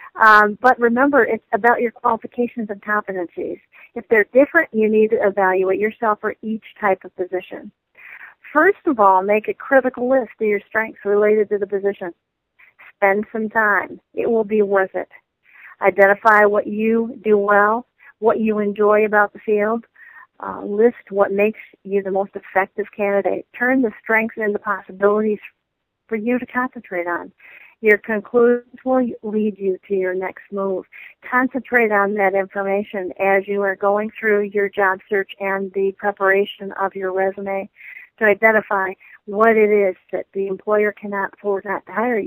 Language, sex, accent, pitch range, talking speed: English, female, American, 200-235 Hz, 160 wpm